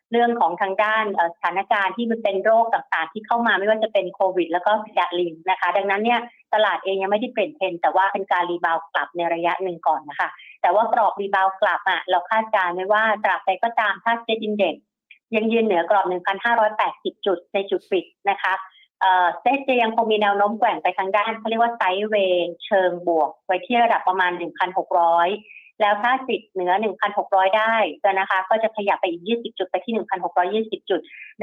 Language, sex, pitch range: Thai, female, 180-220 Hz